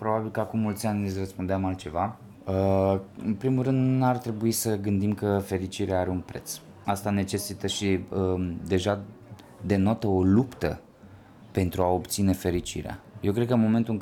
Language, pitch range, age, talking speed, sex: Romanian, 95-125 Hz, 20-39, 160 wpm, male